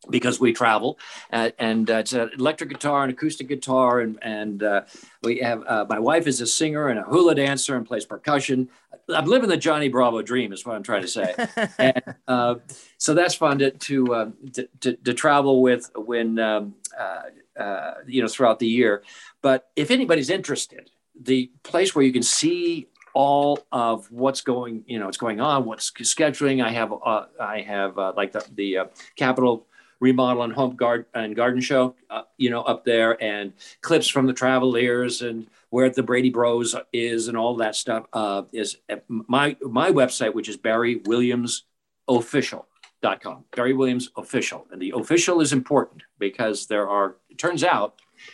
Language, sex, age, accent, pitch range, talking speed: English, male, 50-69, American, 115-140 Hz, 185 wpm